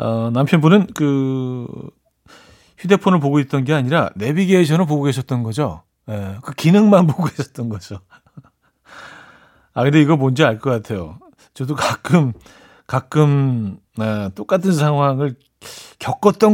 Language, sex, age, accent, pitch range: Korean, male, 40-59, native, 120-165 Hz